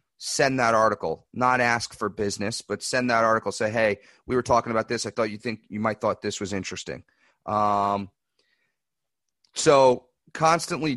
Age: 30-49